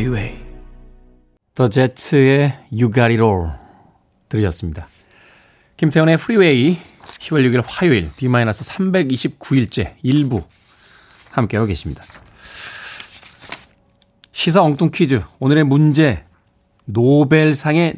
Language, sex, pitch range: Korean, male, 105-155 Hz